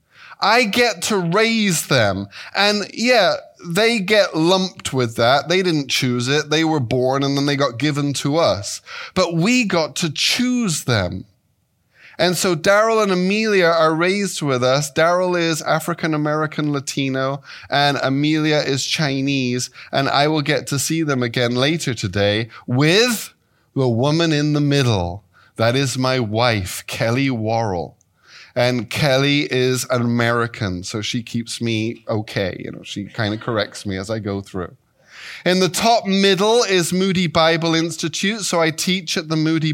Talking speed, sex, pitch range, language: 160 wpm, male, 130-185 Hz, English